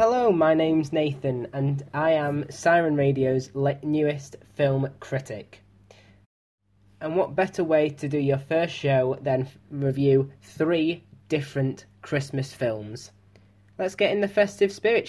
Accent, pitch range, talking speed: British, 120-155 Hz, 130 wpm